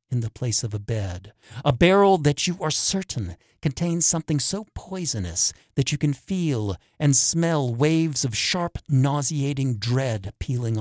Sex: male